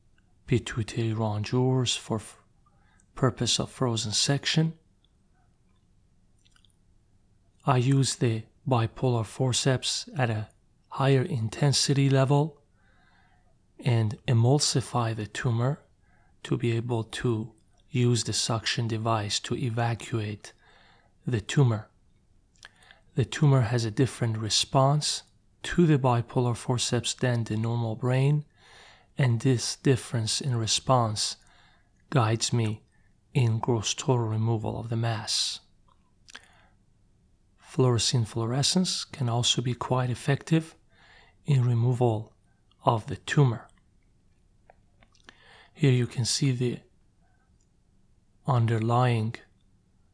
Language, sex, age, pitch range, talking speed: English, male, 30-49, 105-130 Hz, 95 wpm